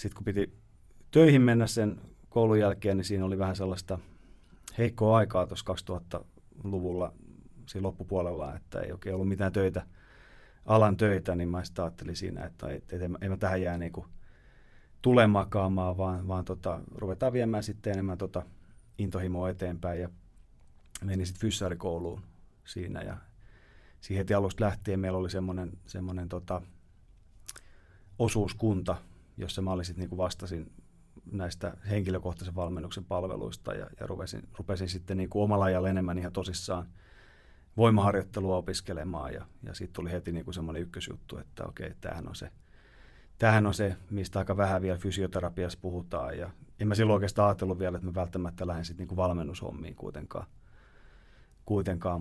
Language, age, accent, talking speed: Finnish, 30-49, native, 145 wpm